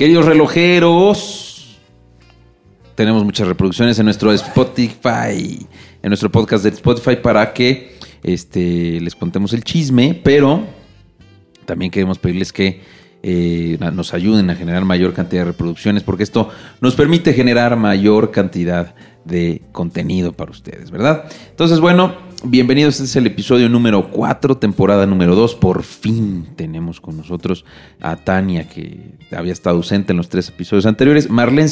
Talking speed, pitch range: 140 wpm, 90-120 Hz